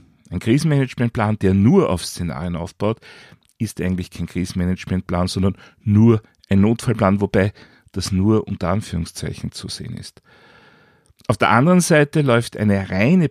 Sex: male